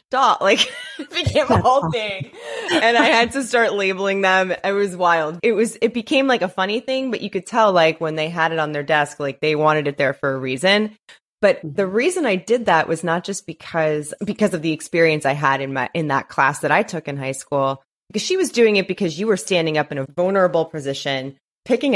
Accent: American